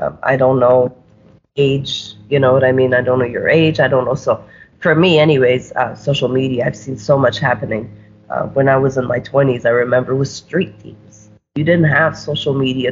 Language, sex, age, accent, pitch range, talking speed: English, female, 30-49, American, 120-150 Hz, 215 wpm